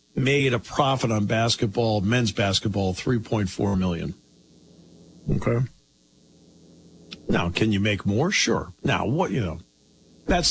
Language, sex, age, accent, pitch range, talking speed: English, male, 50-69, American, 95-150 Hz, 130 wpm